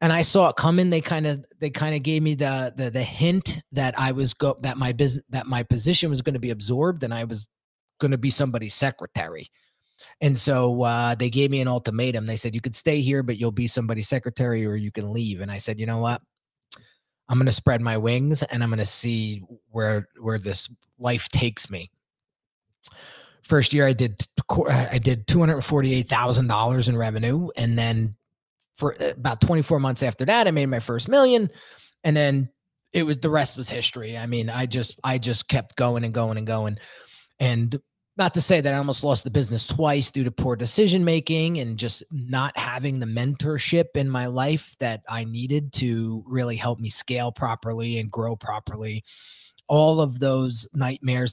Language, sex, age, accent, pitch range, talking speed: English, male, 30-49, American, 115-145 Hz, 205 wpm